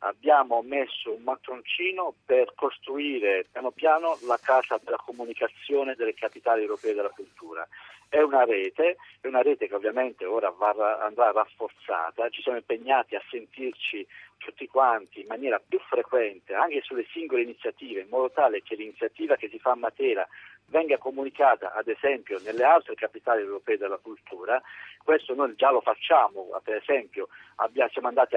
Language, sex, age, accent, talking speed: Italian, male, 50-69, native, 155 wpm